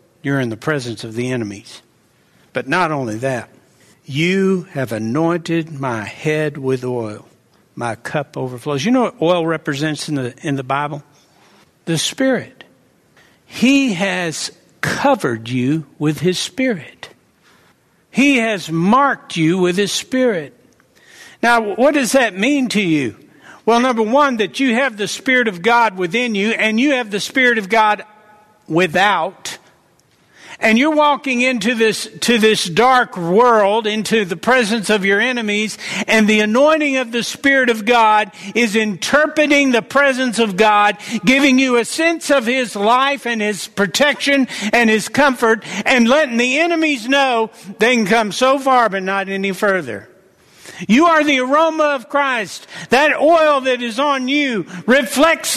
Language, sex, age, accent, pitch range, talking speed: English, male, 60-79, American, 180-260 Hz, 155 wpm